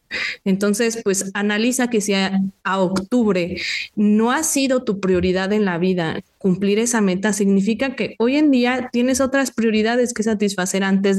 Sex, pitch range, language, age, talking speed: female, 190-230 Hz, Spanish, 30-49, 155 wpm